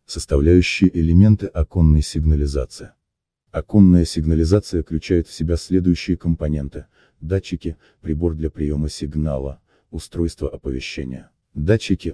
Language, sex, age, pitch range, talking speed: Russian, male, 30-49, 75-90 Hz, 95 wpm